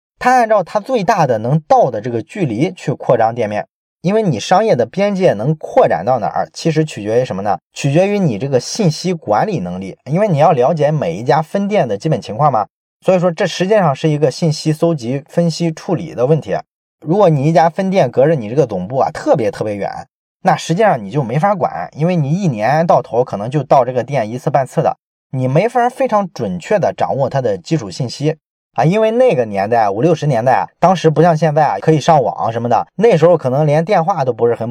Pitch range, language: 135-180 Hz, Chinese